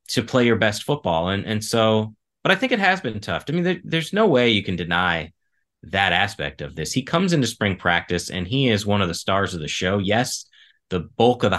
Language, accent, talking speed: English, American, 245 wpm